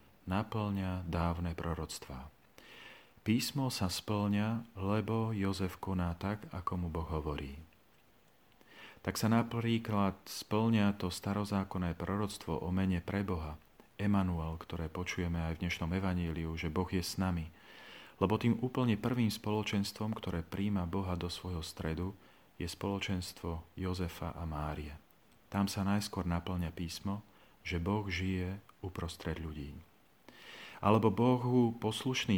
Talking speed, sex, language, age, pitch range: 120 wpm, male, Slovak, 40-59, 85-100 Hz